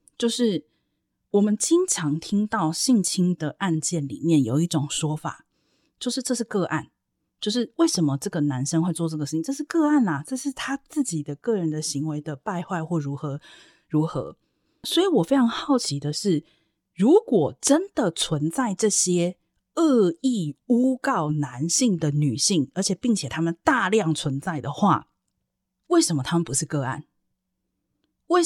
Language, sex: Chinese, female